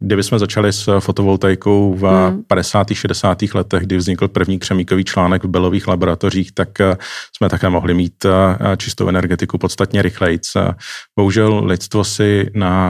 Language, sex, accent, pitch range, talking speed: Czech, male, native, 90-100 Hz, 140 wpm